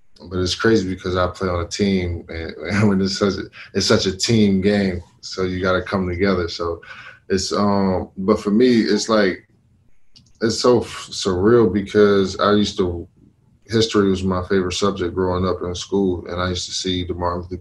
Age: 20-39